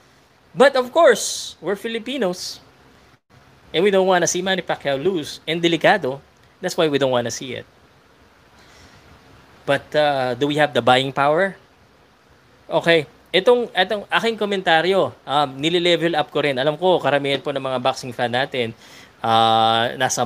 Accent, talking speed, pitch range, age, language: native, 150 wpm, 125-165 Hz, 20-39, Filipino